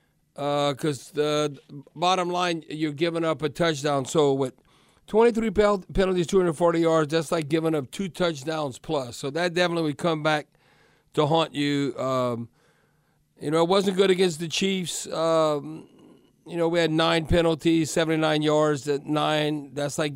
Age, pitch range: 50-69, 150-175 Hz